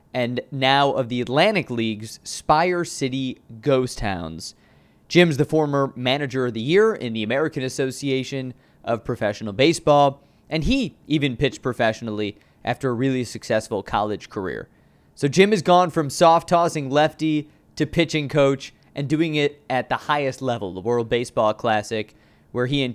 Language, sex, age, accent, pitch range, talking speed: English, male, 20-39, American, 115-150 Hz, 155 wpm